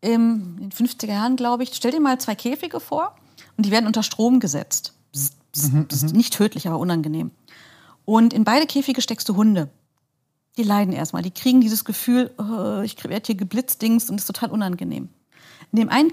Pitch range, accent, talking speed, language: 195-250 Hz, German, 195 wpm, German